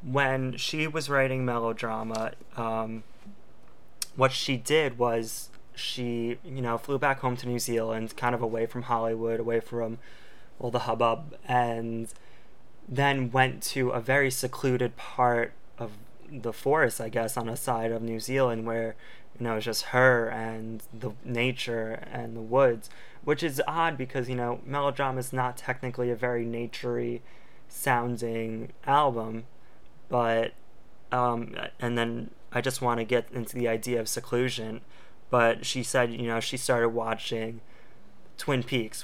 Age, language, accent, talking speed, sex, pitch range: 20-39, English, American, 155 wpm, male, 115-125 Hz